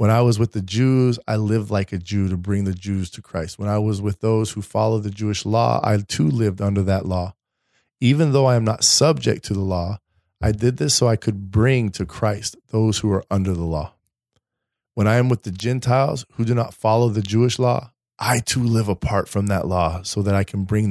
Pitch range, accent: 95-115 Hz, American